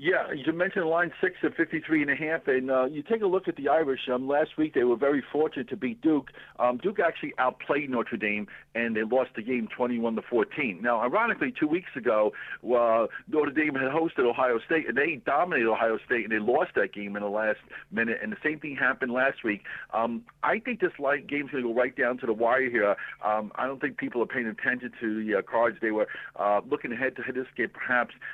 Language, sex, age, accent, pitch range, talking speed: English, male, 60-79, American, 110-140 Hz, 235 wpm